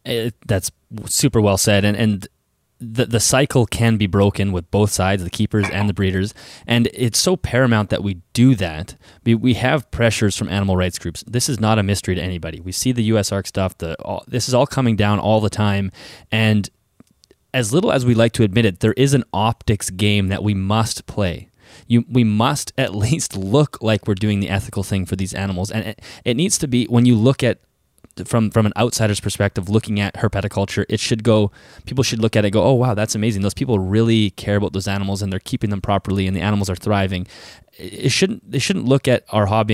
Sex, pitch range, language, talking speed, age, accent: male, 100-115 Hz, English, 225 wpm, 20-39, American